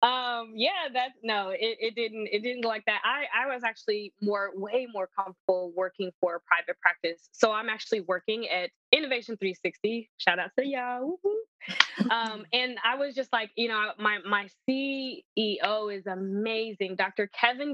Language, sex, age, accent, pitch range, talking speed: English, female, 20-39, American, 180-225 Hz, 175 wpm